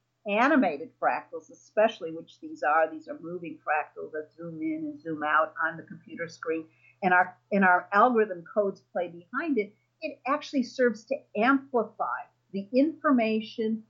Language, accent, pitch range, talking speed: English, American, 175-235 Hz, 155 wpm